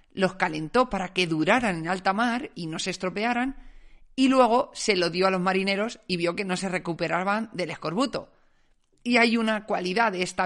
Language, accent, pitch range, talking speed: Spanish, Spanish, 180-235 Hz, 195 wpm